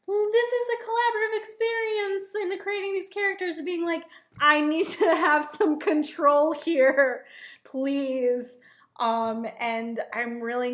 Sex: female